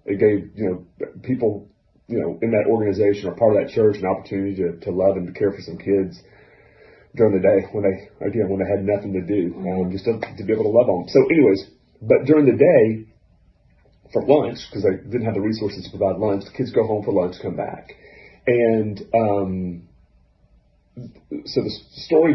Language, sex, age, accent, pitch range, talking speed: English, male, 40-59, American, 95-115 Hz, 195 wpm